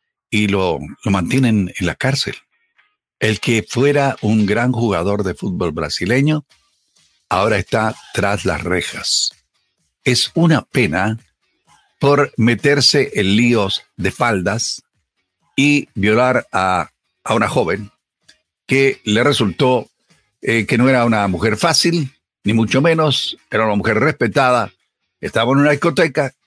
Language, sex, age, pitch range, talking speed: Spanish, male, 60-79, 115-160 Hz, 130 wpm